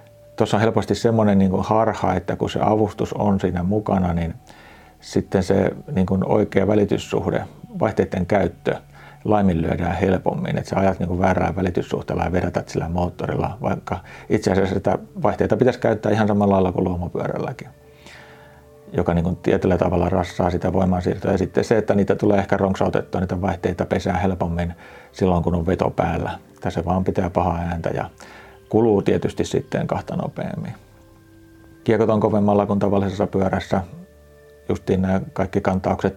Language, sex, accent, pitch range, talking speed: Finnish, male, native, 90-105 Hz, 150 wpm